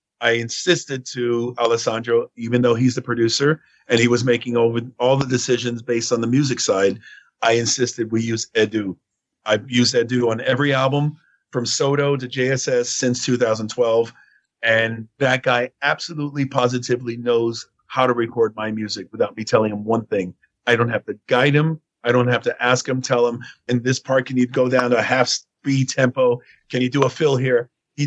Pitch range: 115-135 Hz